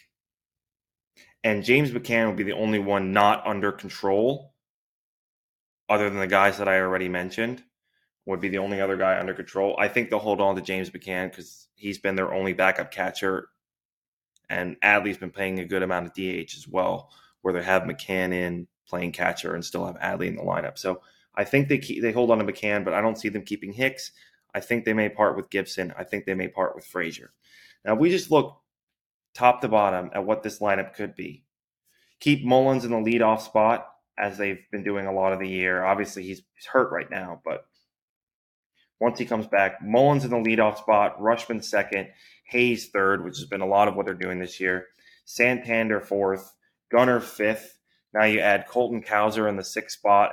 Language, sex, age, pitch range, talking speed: English, male, 20-39, 95-110 Hz, 205 wpm